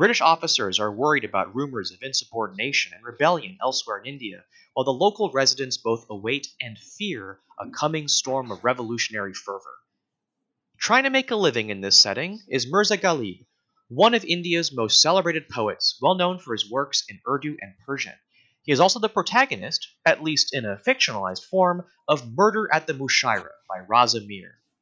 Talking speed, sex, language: 175 wpm, male, English